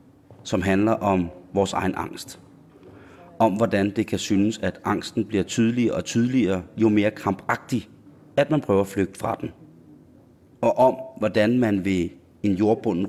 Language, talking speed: Danish, 155 wpm